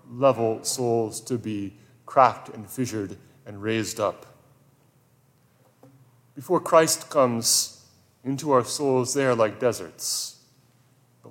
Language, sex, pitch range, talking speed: English, male, 120-140 Hz, 110 wpm